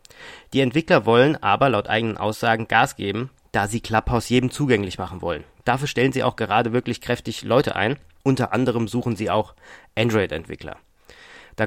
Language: German